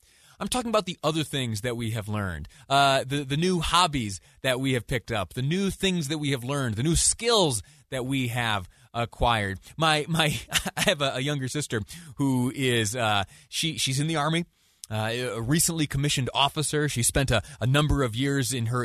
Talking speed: 205 wpm